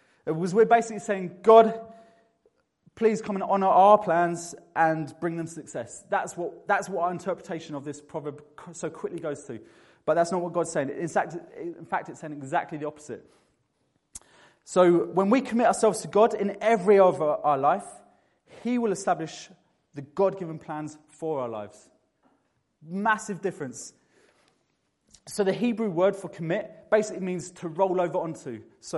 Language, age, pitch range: English, 20-39, 155-195 Hz